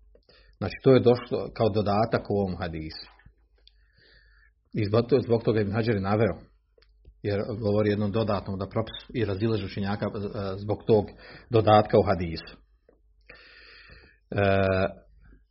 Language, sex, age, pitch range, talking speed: Croatian, male, 40-59, 100-120 Hz, 120 wpm